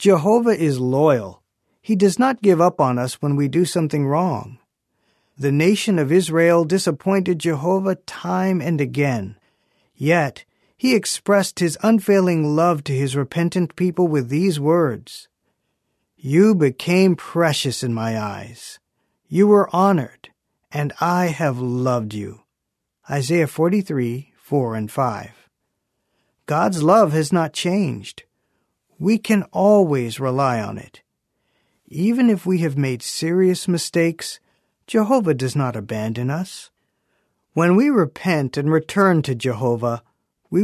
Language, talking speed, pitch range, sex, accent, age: English, 130 wpm, 135-185 Hz, male, American, 40-59